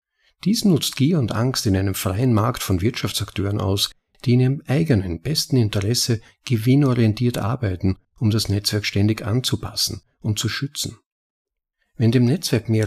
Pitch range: 100-130 Hz